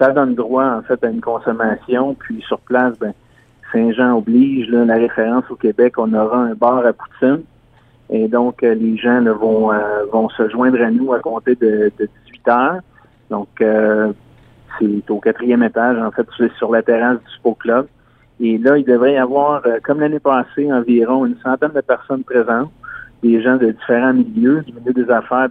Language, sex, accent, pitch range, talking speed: French, male, Canadian, 115-130 Hz, 190 wpm